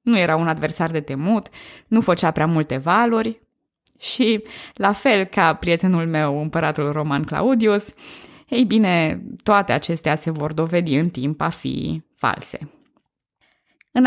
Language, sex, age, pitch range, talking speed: Romanian, female, 20-39, 155-205 Hz, 140 wpm